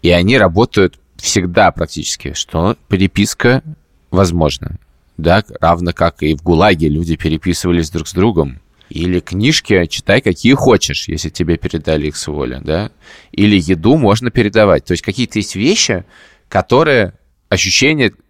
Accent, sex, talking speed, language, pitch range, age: native, male, 140 wpm, Russian, 85-105 Hz, 20-39